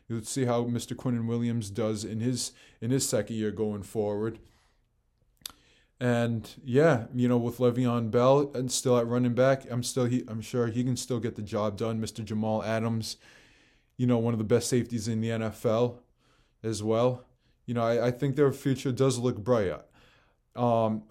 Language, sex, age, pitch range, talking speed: English, male, 20-39, 110-125 Hz, 190 wpm